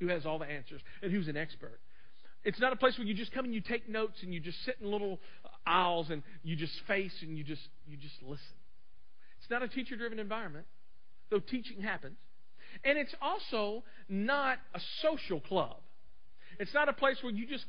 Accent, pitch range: American, 180-250 Hz